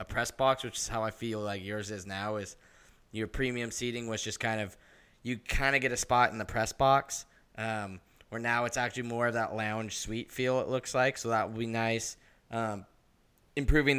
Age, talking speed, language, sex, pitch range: 10-29, 220 wpm, English, male, 105-120 Hz